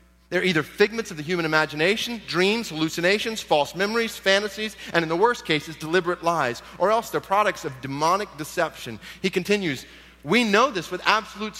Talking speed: 170 wpm